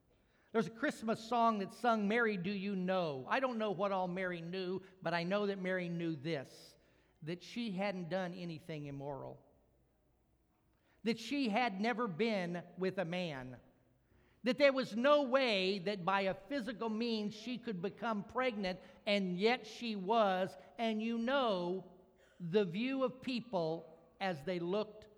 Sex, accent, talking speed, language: male, American, 155 wpm, English